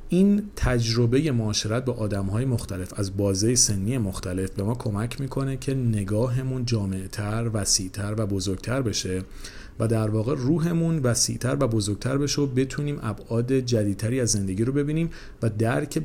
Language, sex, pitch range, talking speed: Persian, male, 100-125 Hz, 145 wpm